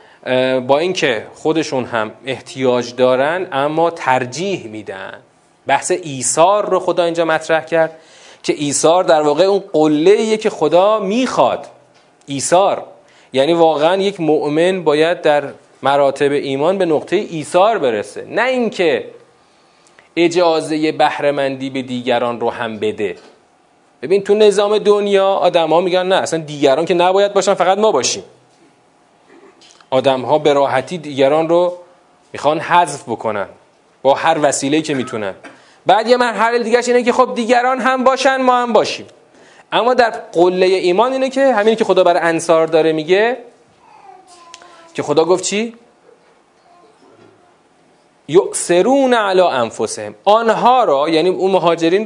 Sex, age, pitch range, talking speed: male, 40-59, 140-210 Hz, 135 wpm